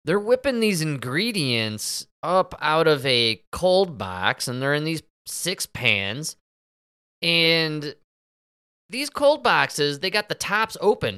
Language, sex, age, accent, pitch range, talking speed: English, male, 20-39, American, 130-180 Hz, 135 wpm